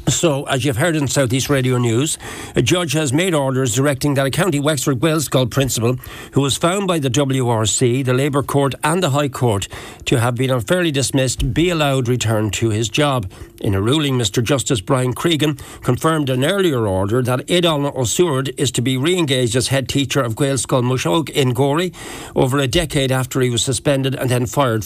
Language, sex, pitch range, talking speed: English, male, 125-150 Hz, 200 wpm